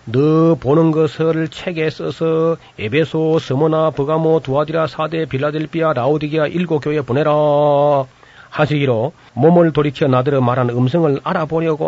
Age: 40-59